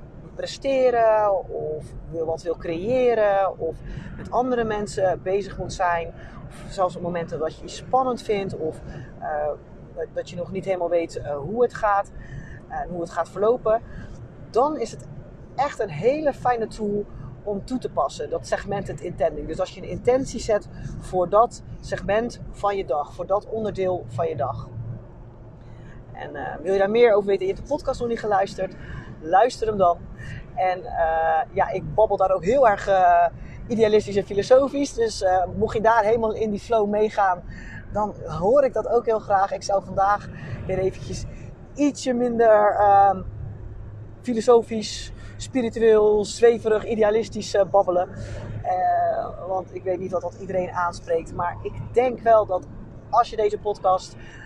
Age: 40-59